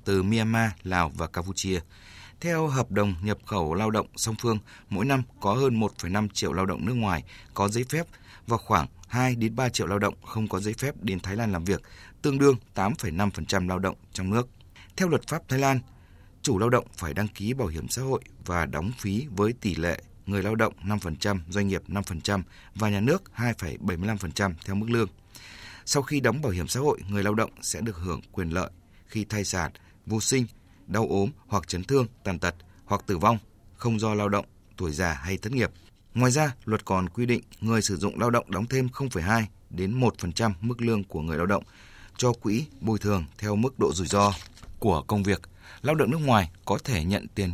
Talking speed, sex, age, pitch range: 210 wpm, male, 20-39, 95-115 Hz